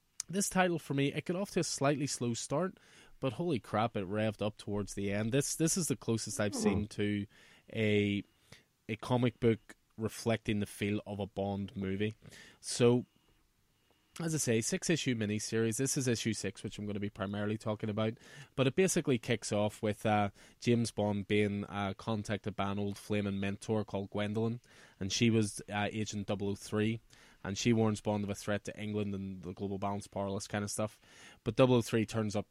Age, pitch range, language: 20-39, 100-115 Hz, English